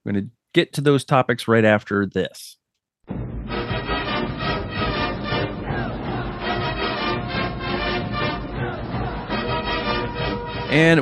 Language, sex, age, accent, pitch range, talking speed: English, male, 40-59, American, 110-135 Hz, 60 wpm